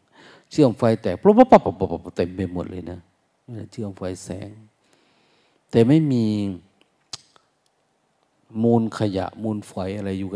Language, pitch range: Thai, 95-110 Hz